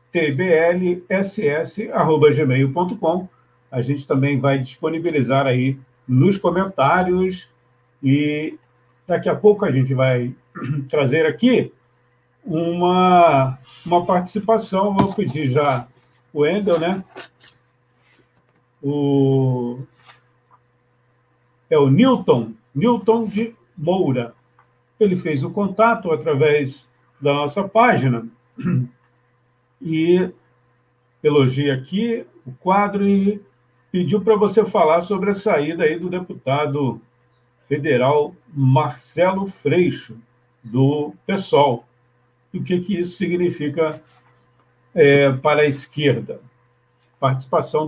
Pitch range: 120-185 Hz